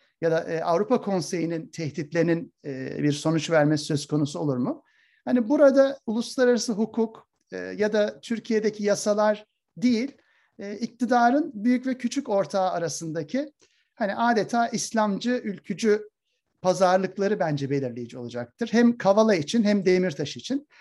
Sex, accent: male, native